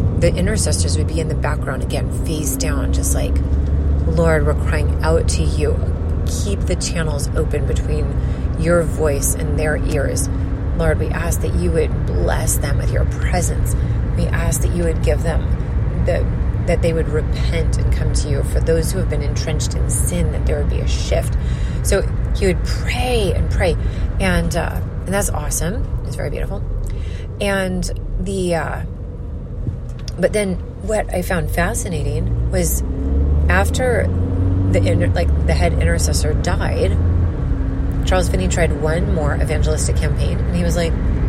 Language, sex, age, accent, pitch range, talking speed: English, female, 30-49, American, 75-90 Hz, 165 wpm